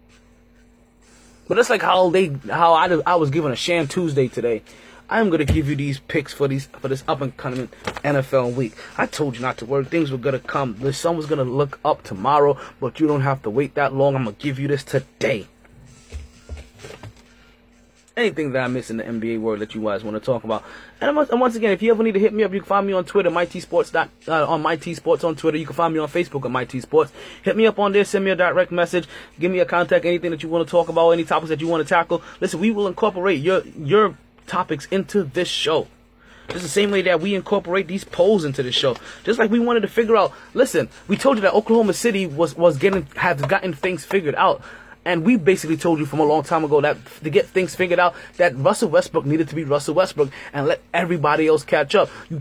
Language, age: Japanese, 20-39